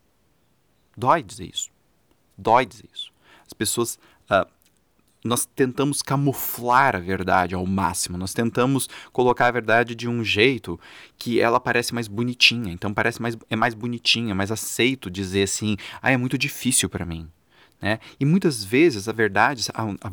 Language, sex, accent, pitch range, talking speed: Portuguese, male, Brazilian, 105-135 Hz, 160 wpm